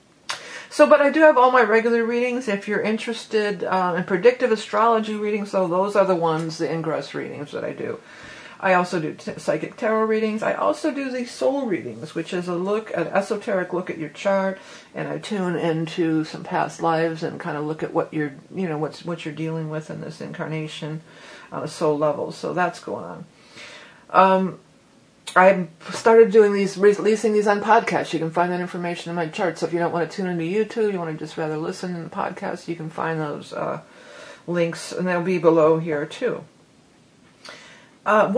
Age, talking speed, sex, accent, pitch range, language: 50-69, 205 wpm, female, American, 160-205 Hz, English